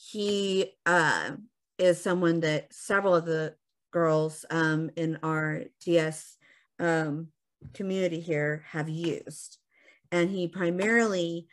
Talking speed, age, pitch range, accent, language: 110 wpm, 40-59, 155-180 Hz, American, English